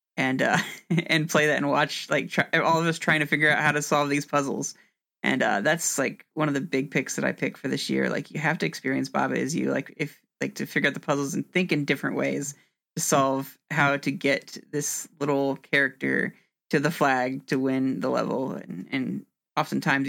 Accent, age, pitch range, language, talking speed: American, 20-39, 135-155 Hz, English, 225 wpm